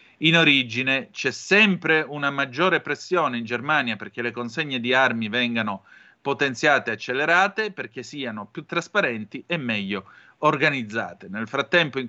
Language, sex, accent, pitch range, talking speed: Italian, male, native, 120-150 Hz, 140 wpm